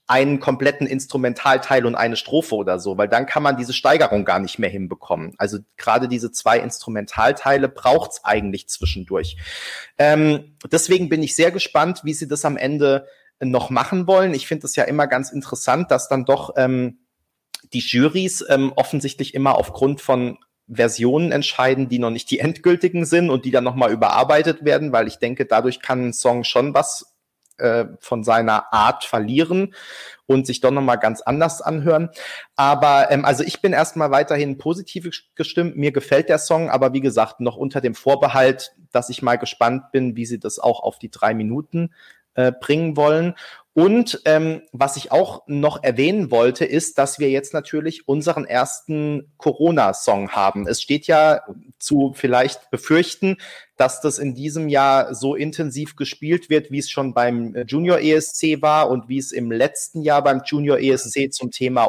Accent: German